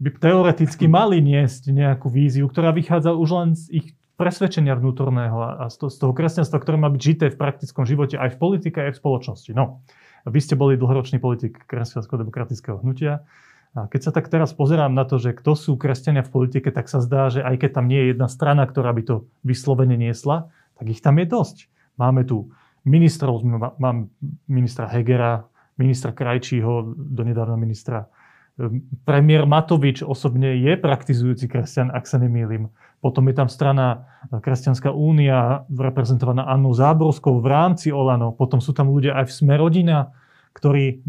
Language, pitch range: Slovak, 125-150 Hz